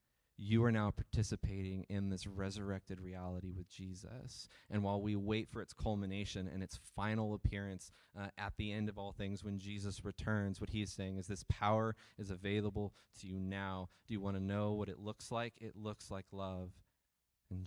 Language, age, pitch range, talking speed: English, 20-39, 90-100 Hz, 195 wpm